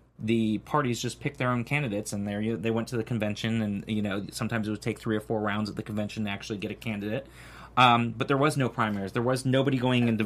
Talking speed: 270 wpm